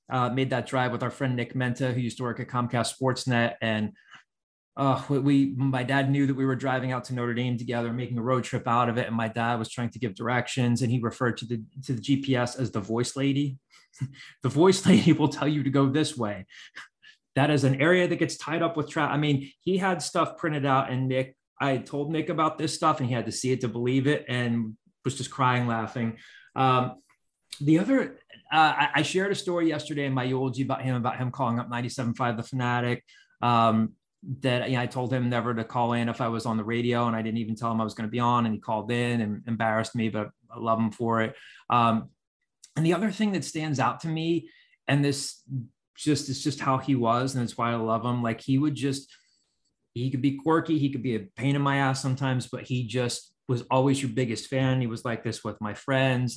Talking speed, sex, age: 240 wpm, male, 20-39